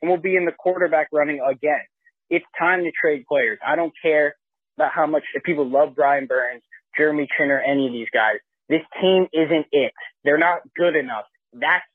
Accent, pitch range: American, 145-175 Hz